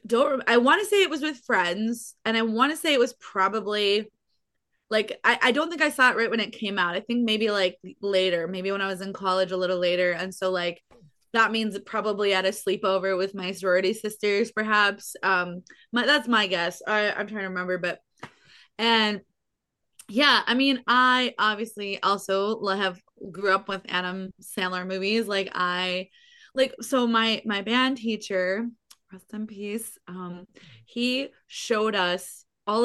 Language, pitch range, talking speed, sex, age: English, 190-230 Hz, 185 wpm, female, 20-39